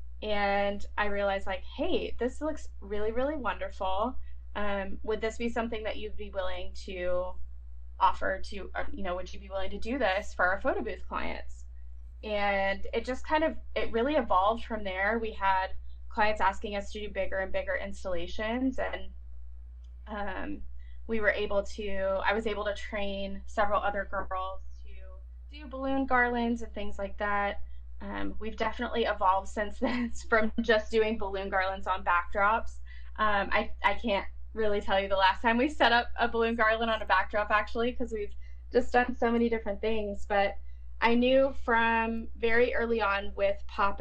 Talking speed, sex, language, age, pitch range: 175 wpm, female, English, 20-39, 180-220 Hz